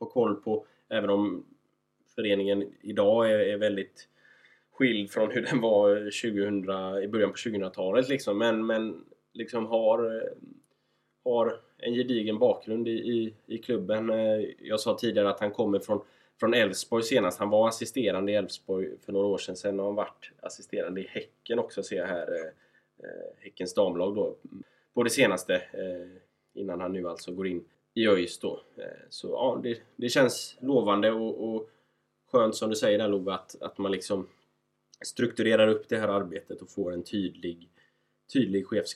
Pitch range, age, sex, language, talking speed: 100-120 Hz, 20-39, male, Swedish, 155 wpm